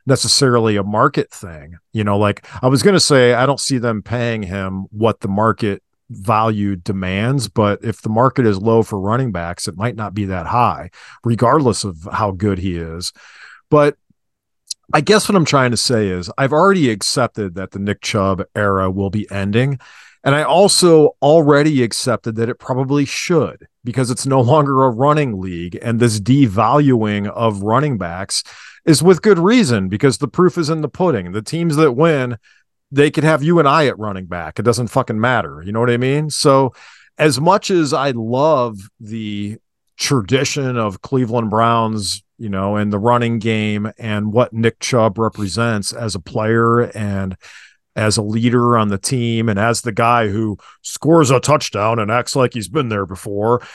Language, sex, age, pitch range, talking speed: English, male, 40-59, 105-140 Hz, 185 wpm